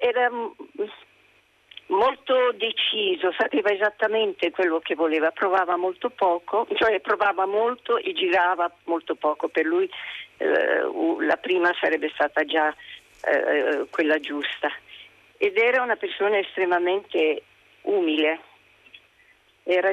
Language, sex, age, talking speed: Italian, female, 50-69, 110 wpm